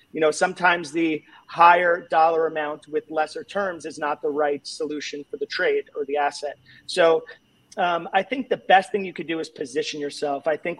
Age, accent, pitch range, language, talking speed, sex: 30-49, American, 150-175 Hz, English, 200 wpm, male